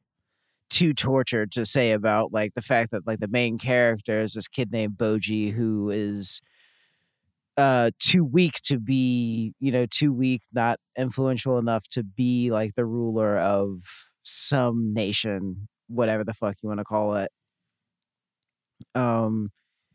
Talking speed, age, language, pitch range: 145 wpm, 30-49, English, 110-130 Hz